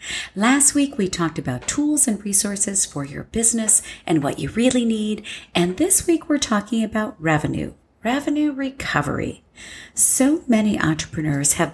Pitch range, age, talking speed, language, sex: 155-255 Hz, 50-69, 150 wpm, English, female